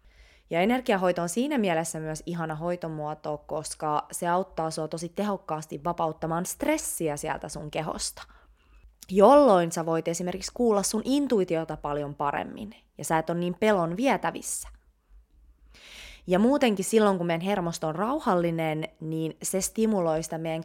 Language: Finnish